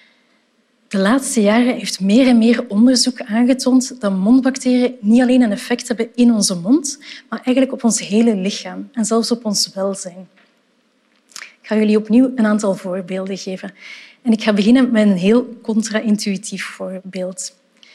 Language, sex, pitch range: Dutch, female, 210-250 Hz